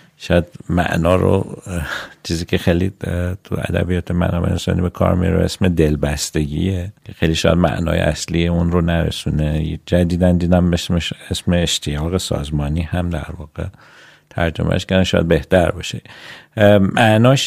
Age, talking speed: 50-69, 125 wpm